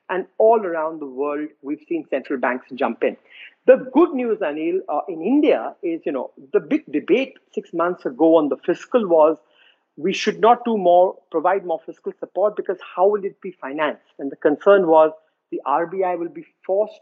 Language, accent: English, Indian